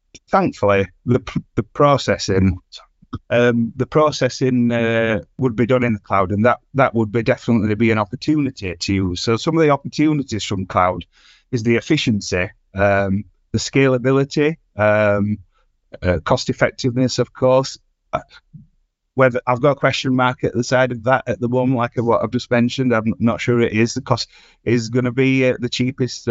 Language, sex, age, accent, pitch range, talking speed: English, male, 30-49, British, 100-125 Hz, 175 wpm